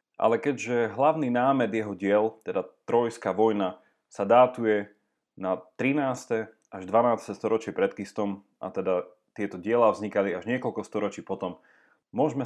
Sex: male